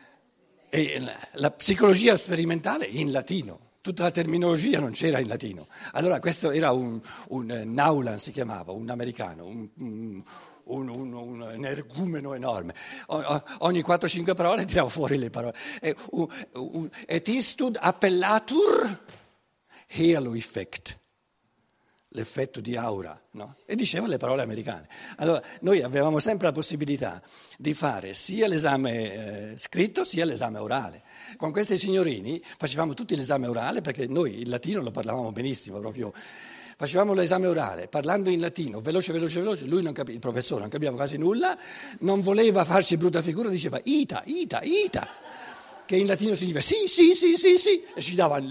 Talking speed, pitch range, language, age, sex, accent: 155 wpm, 125-190 Hz, Italian, 60-79, male, native